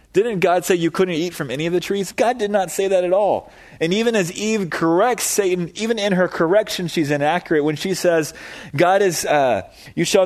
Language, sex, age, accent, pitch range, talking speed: English, male, 30-49, American, 135-175 Hz, 220 wpm